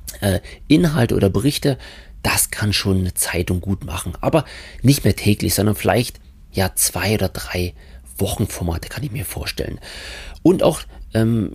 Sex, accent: male, German